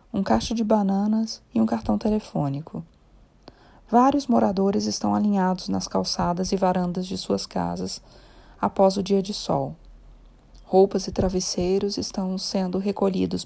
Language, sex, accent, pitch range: Portuguese, female, Brazilian, 175-220 Hz